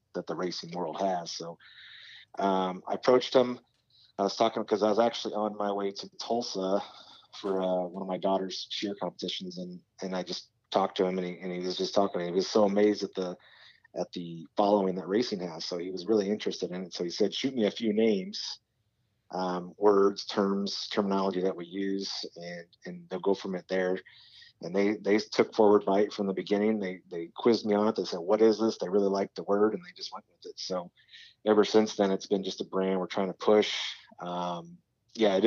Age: 30-49